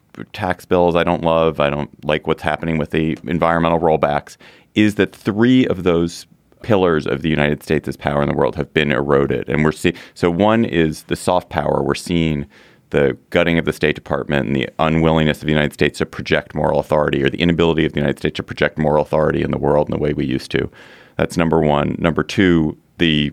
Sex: male